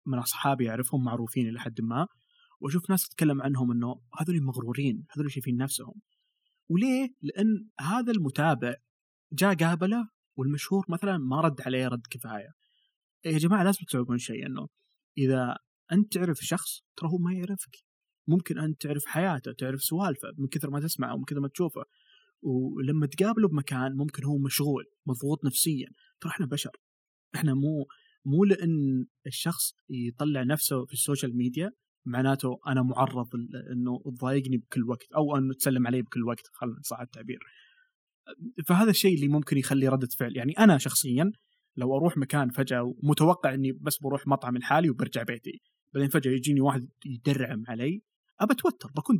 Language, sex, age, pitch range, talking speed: Arabic, male, 20-39, 130-180 Hz, 150 wpm